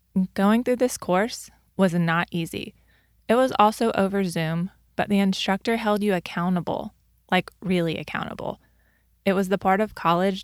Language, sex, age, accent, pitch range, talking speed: English, female, 20-39, American, 180-205 Hz, 155 wpm